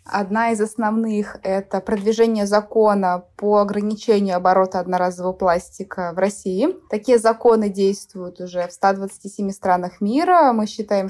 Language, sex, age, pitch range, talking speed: Russian, female, 20-39, 190-230 Hz, 125 wpm